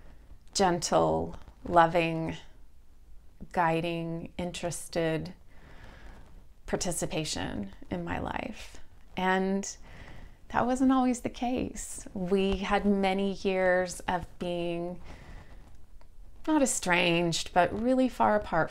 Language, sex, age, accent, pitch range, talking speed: English, female, 30-49, American, 155-195 Hz, 85 wpm